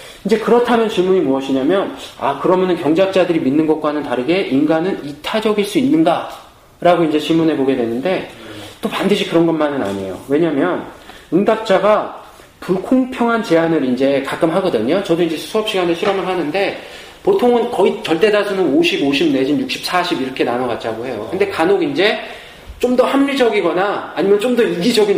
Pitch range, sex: 165-250 Hz, male